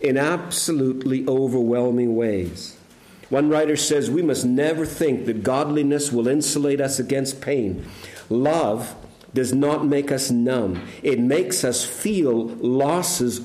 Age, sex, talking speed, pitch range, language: 50-69, male, 130 wpm, 120-140 Hz, English